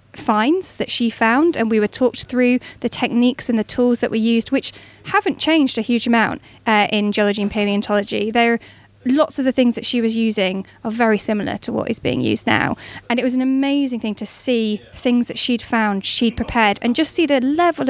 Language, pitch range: English, 215-255 Hz